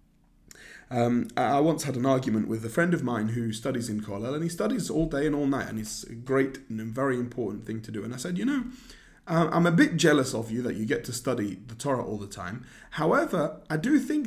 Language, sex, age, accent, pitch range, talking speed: English, male, 30-49, British, 115-165 Hz, 250 wpm